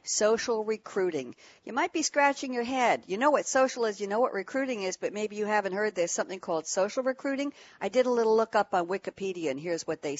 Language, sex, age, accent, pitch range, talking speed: English, female, 60-79, American, 180-245 Hz, 235 wpm